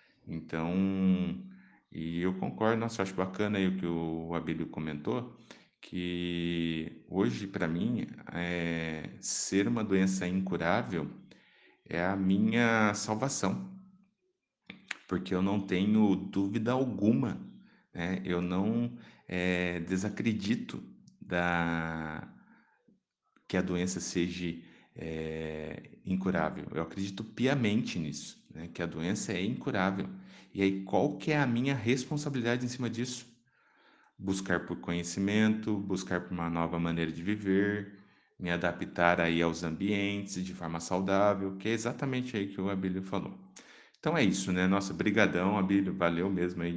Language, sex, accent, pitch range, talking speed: Portuguese, male, Brazilian, 85-105 Hz, 130 wpm